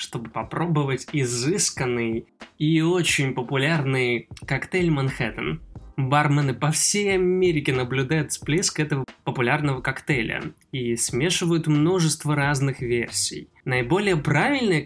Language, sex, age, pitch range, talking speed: Russian, male, 20-39, 130-170 Hz, 95 wpm